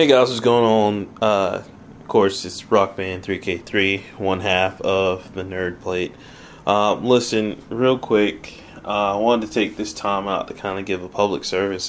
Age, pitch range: 20-39, 95-110 Hz